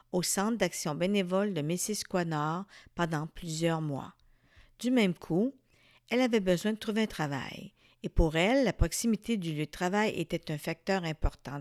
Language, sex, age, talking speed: French, female, 60-79, 170 wpm